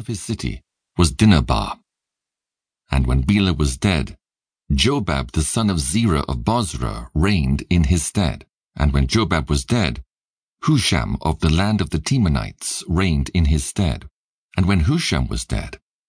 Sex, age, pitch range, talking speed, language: male, 50-69, 75-100 Hz, 155 wpm, English